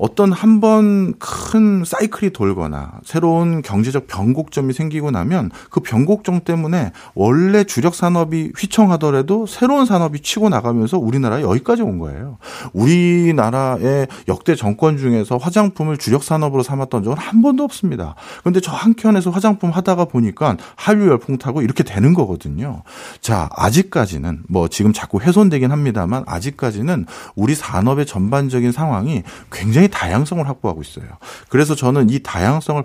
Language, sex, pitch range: Korean, male, 110-175 Hz